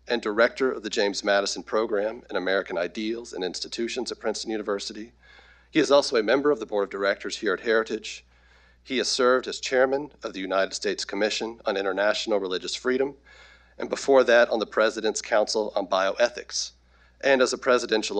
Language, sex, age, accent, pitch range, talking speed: English, male, 40-59, American, 100-135 Hz, 180 wpm